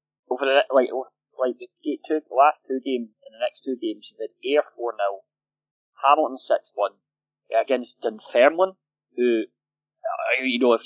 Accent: British